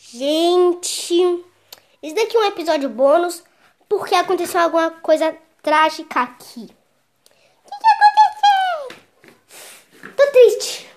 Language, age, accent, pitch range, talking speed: Portuguese, 10-29, Brazilian, 275-395 Hz, 100 wpm